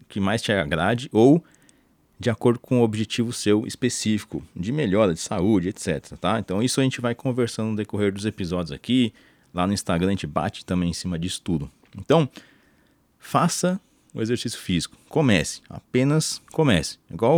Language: Portuguese